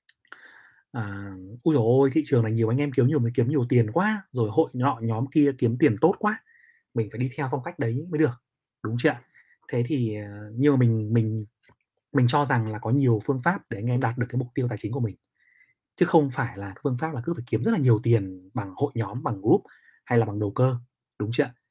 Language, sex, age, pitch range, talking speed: Vietnamese, male, 20-39, 115-145 Hz, 240 wpm